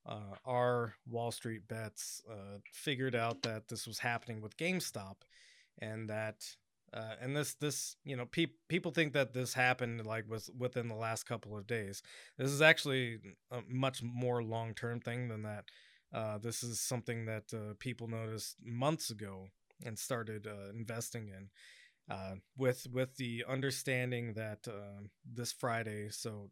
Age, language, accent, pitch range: 20-39, English, American, 110-130 Hz